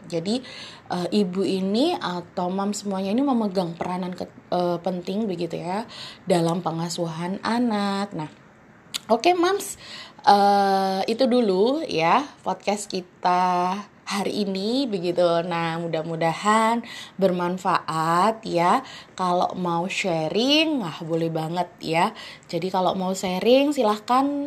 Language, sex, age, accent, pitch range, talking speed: Indonesian, female, 20-39, native, 175-225 Hz, 115 wpm